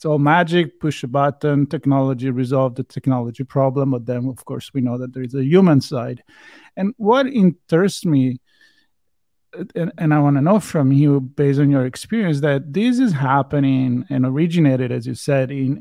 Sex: male